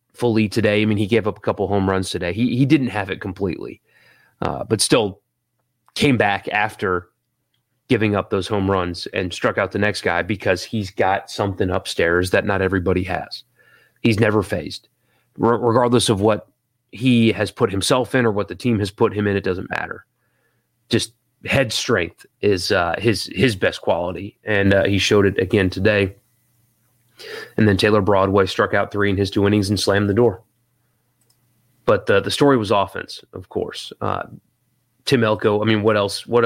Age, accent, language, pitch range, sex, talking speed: 30-49, American, English, 100-120 Hz, male, 190 wpm